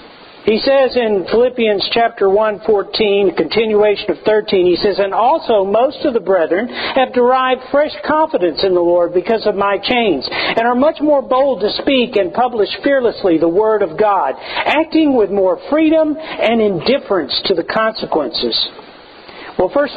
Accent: American